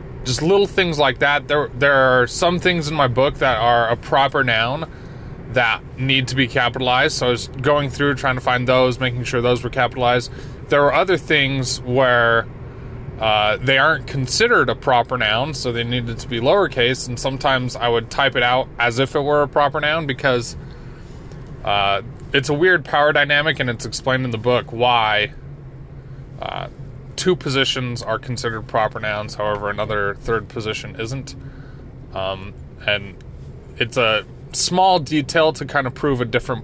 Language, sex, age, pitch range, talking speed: English, male, 20-39, 125-145 Hz, 175 wpm